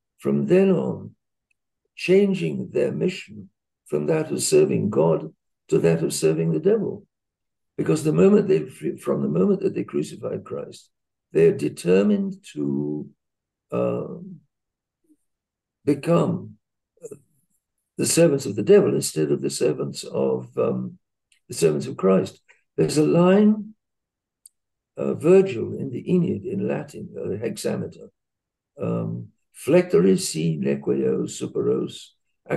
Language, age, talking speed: English, 60-79, 120 wpm